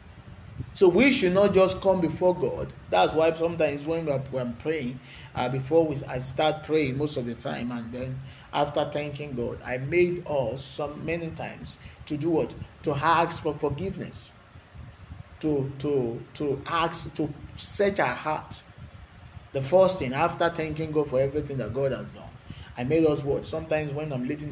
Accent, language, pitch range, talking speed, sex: Nigerian, English, 130-165 Hz, 170 wpm, male